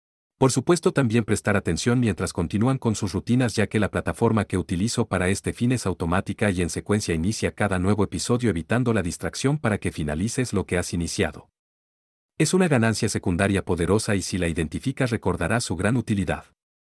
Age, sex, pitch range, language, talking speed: 40-59, male, 90-115 Hz, Spanish, 180 wpm